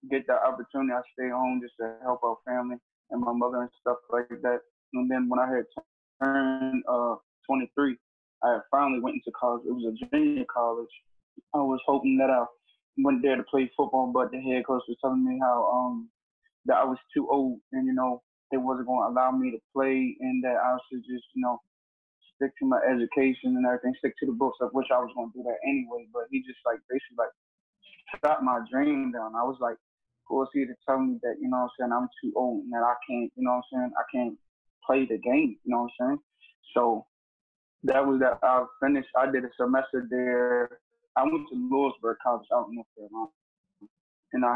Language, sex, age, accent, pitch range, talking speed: English, male, 20-39, American, 125-135 Hz, 225 wpm